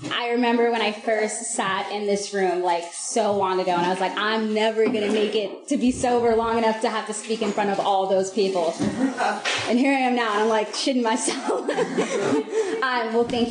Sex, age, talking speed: female, 20-39, 225 wpm